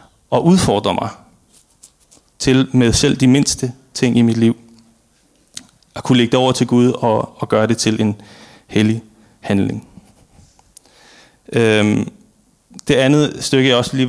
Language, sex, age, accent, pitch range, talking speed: Danish, male, 30-49, native, 110-130 Hz, 145 wpm